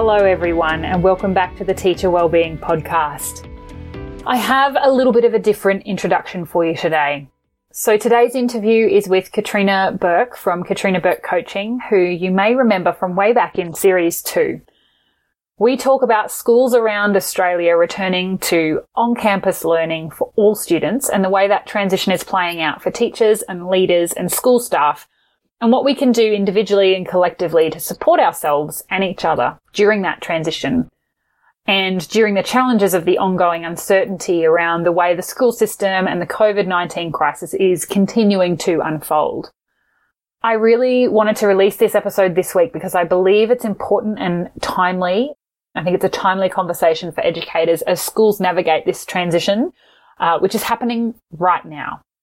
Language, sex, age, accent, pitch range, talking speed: English, female, 30-49, Australian, 175-215 Hz, 165 wpm